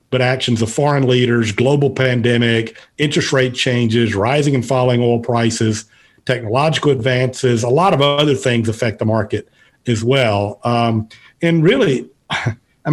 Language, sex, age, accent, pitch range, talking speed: English, male, 50-69, American, 115-135 Hz, 145 wpm